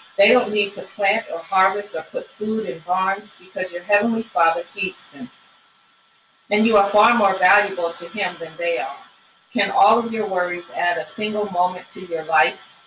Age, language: 40-59, English